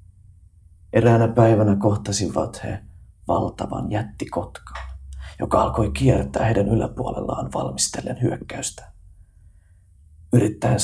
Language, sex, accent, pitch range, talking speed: Finnish, male, native, 90-110 Hz, 80 wpm